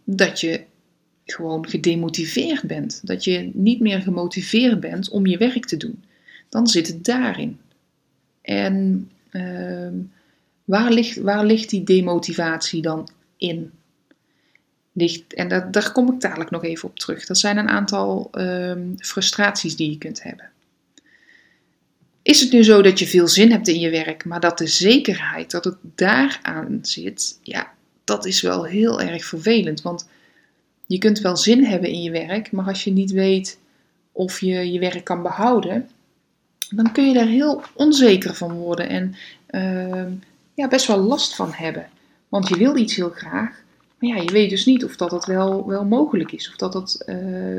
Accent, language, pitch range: Dutch, Dutch, 175-225 Hz